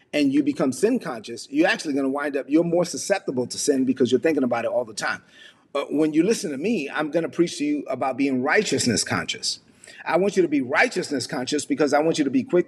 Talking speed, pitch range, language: 255 wpm, 135-175 Hz, English